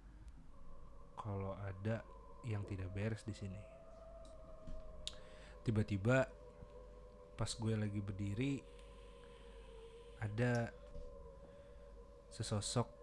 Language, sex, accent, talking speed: Indonesian, male, native, 65 wpm